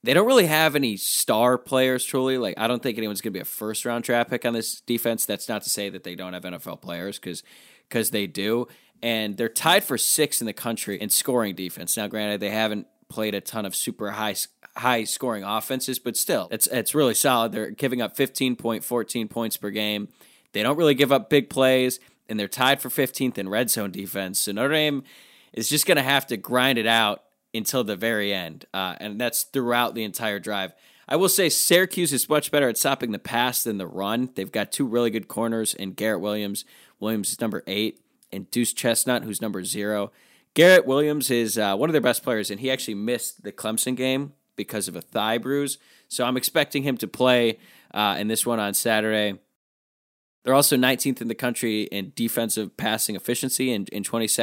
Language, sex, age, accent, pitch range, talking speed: English, male, 20-39, American, 105-130 Hz, 215 wpm